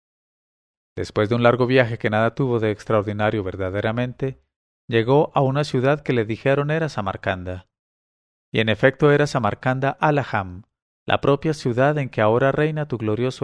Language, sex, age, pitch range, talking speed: English, male, 40-59, 105-140 Hz, 155 wpm